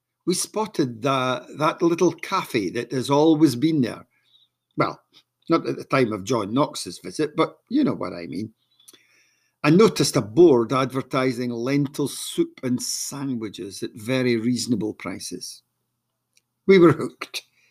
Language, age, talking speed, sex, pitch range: English, 50-69, 140 wpm, male, 125-155 Hz